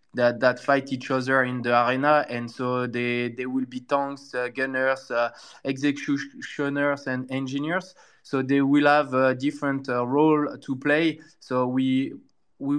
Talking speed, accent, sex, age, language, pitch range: 160 wpm, French, male, 20-39, English, 125-145 Hz